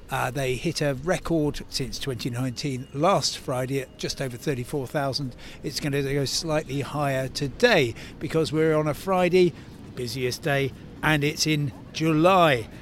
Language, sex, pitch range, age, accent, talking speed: English, male, 130-160 Hz, 60-79, British, 145 wpm